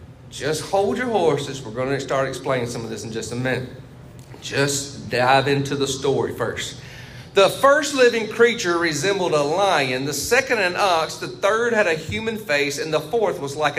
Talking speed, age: 190 wpm, 40-59